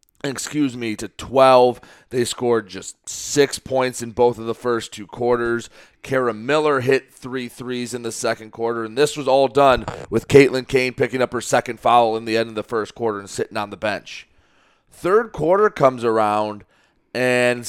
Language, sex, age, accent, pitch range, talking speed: English, male, 30-49, American, 120-150 Hz, 185 wpm